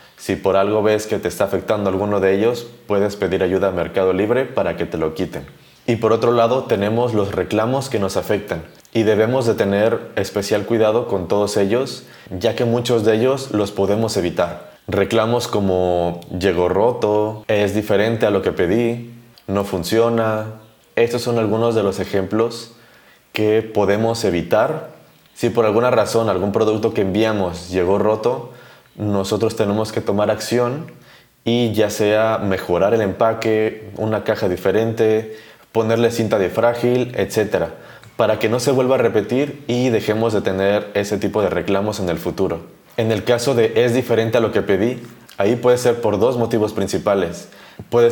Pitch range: 100-115 Hz